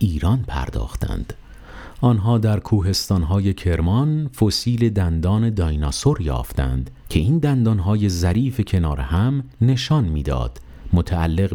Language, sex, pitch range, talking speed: Persian, male, 80-105 Hz, 100 wpm